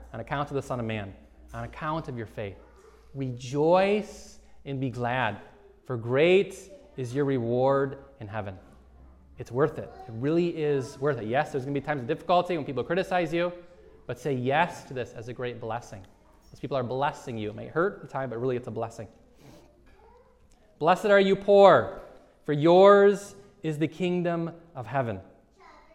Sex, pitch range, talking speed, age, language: male, 125-170 Hz, 185 wpm, 20-39, English